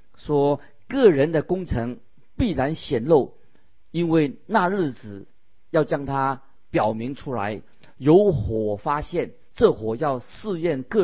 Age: 50-69